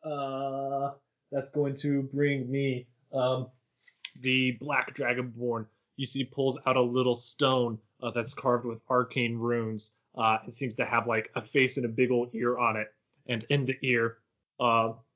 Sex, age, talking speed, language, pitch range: male, 20-39, 170 wpm, English, 115-135 Hz